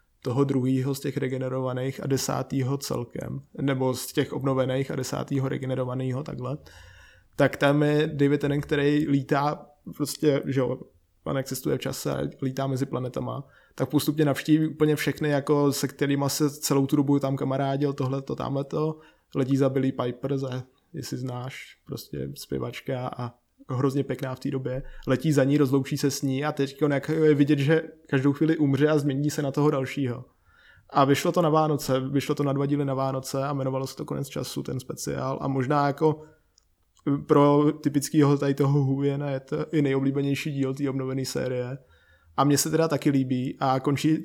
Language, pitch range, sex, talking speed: Czech, 130-145 Hz, male, 175 wpm